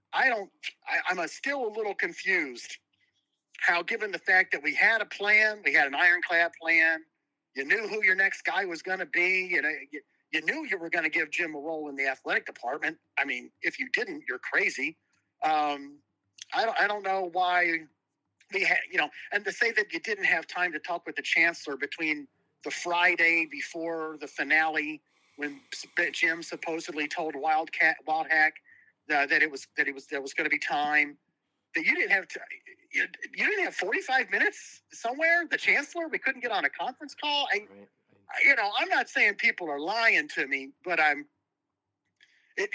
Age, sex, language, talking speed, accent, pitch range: 40-59, male, English, 200 wpm, American, 150-200 Hz